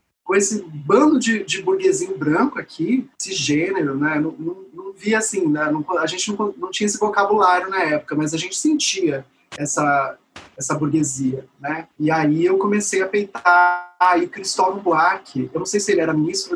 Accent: Brazilian